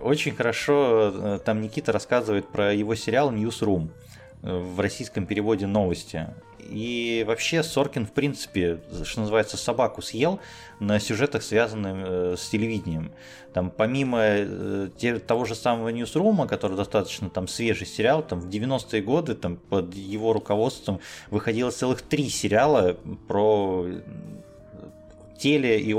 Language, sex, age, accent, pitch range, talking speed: Russian, male, 20-39, native, 95-115 Hz, 120 wpm